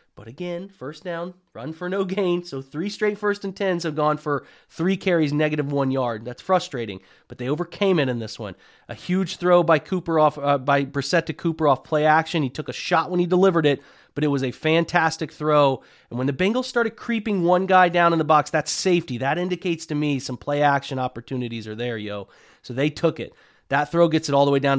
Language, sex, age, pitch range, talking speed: English, male, 30-49, 135-165 Hz, 230 wpm